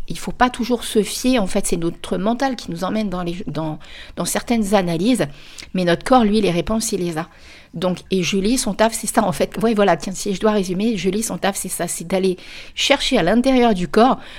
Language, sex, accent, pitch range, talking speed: French, female, French, 185-230 Hz, 230 wpm